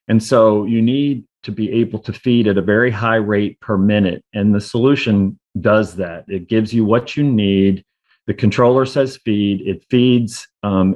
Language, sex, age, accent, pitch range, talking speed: English, male, 40-59, American, 100-115 Hz, 185 wpm